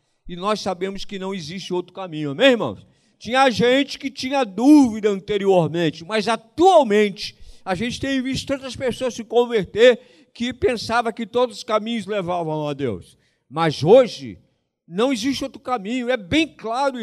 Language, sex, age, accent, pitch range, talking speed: Portuguese, male, 50-69, Brazilian, 180-255 Hz, 155 wpm